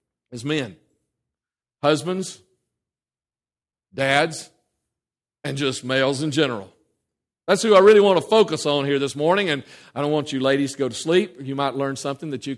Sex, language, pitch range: male, English, 140-180 Hz